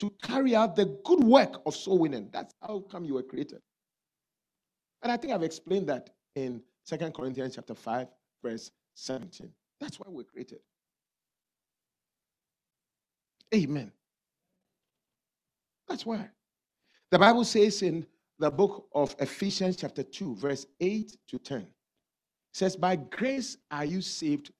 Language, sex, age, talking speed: English, male, 50-69, 135 wpm